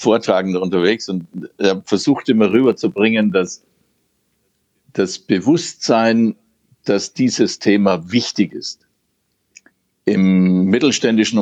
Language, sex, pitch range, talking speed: German, male, 95-115 Hz, 90 wpm